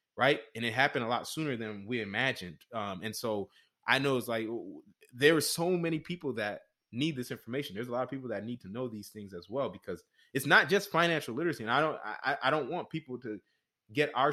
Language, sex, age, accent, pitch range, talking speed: English, male, 20-39, American, 115-145 Hz, 235 wpm